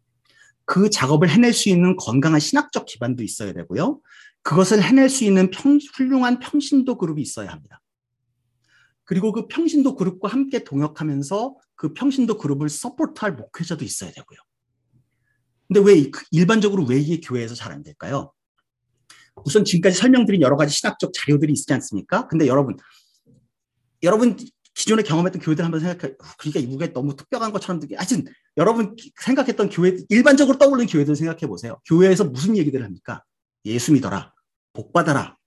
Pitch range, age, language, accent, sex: 135-220 Hz, 40-59, Korean, native, male